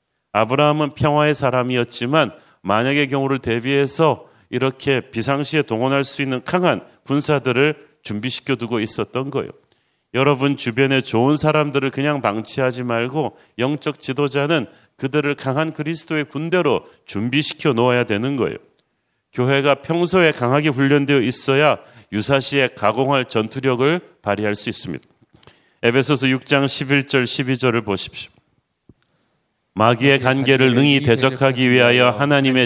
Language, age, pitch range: Korean, 40-59, 125-145 Hz